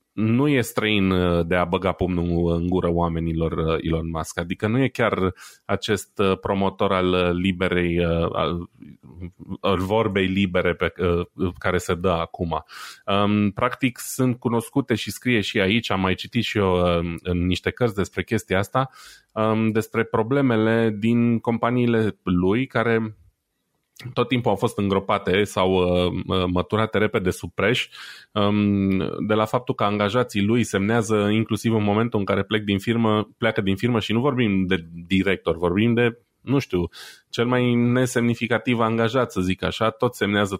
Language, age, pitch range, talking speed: Romanian, 30-49, 95-115 Hz, 145 wpm